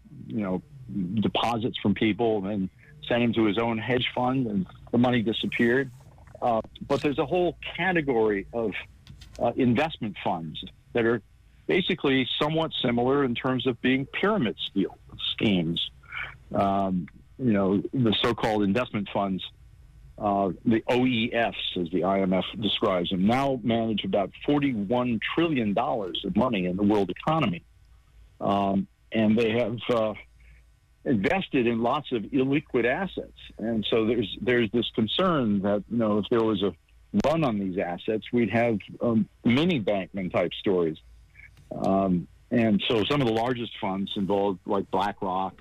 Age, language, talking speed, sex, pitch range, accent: 50-69, English, 145 wpm, male, 95-120 Hz, American